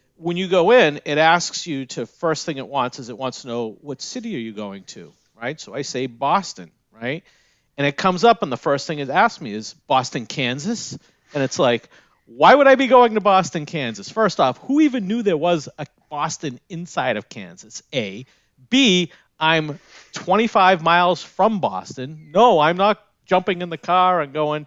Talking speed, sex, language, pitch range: 200 wpm, male, English, 125-170 Hz